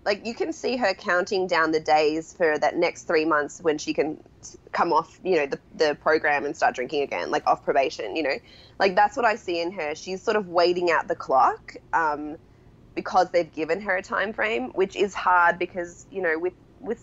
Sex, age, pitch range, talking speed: female, 20-39, 155-195 Hz, 220 wpm